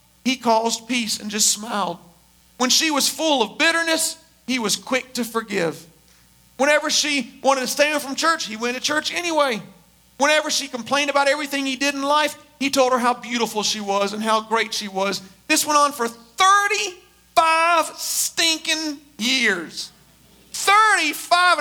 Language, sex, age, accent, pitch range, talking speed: English, male, 40-59, American, 225-310 Hz, 165 wpm